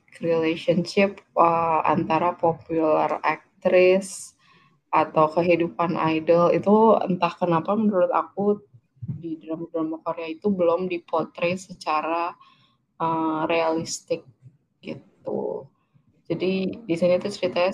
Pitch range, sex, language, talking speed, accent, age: 155-180 Hz, female, Indonesian, 90 wpm, native, 20-39